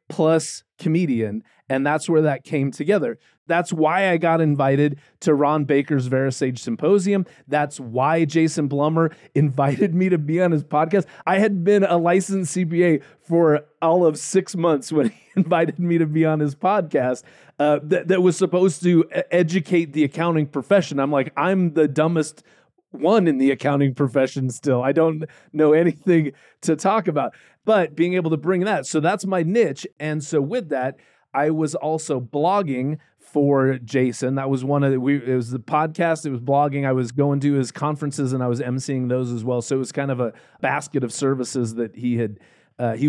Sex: male